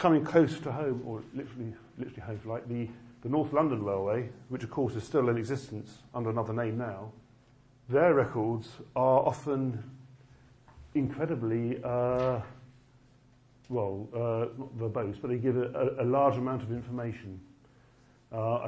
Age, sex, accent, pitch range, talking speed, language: 50-69, male, British, 115-135 Hz, 145 wpm, English